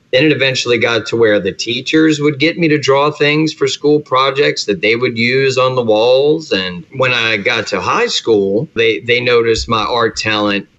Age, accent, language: 30-49, American, English